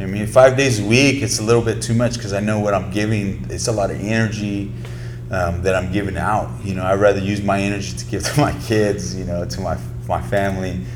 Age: 30-49